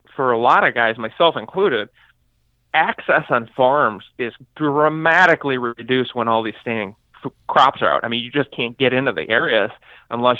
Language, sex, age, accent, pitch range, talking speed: English, male, 30-49, American, 115-145 Hz, 180 wpm